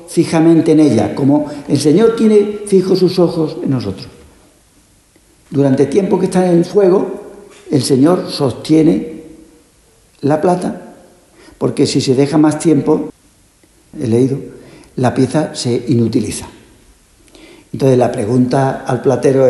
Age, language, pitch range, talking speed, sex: 60-79, Spanish, 135-165 Hz, 130 wpm, male